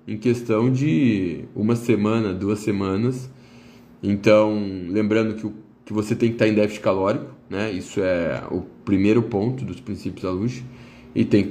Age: 20-39